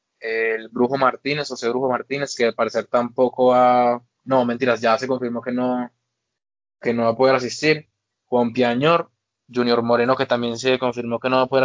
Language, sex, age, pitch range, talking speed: Spanish, male, 20-39, 120-135 Hz, 195 wpm